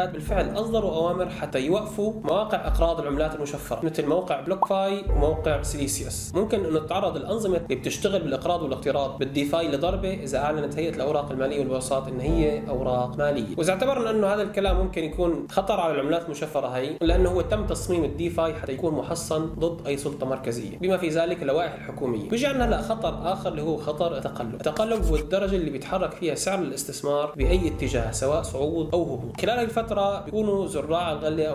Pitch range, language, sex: 135-175 Hz, Arabic, male